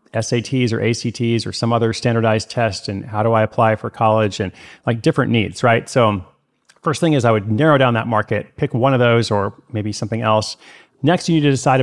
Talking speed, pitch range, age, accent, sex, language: 220 wpm, 110-125 Hz, 30-49, American, male, English